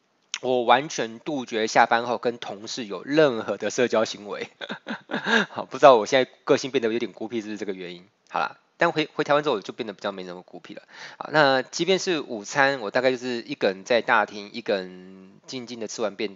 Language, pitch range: Chinese, 110-130 Hz